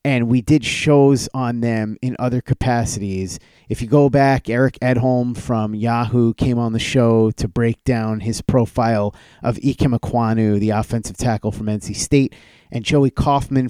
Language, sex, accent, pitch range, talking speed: English, male, American, 115-135 Hz, 160 wpm